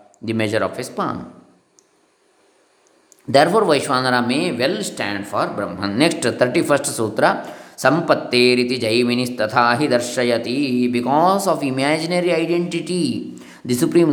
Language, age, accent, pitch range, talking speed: English, 20-39, Indian, 120-195 Hz, 100 wpm